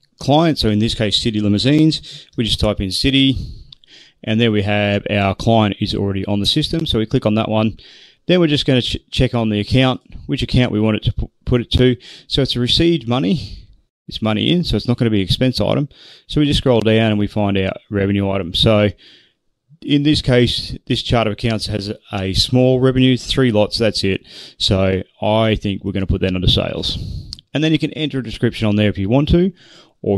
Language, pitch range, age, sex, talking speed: English, 105-130 Hz, 30-49, male, 230 wpm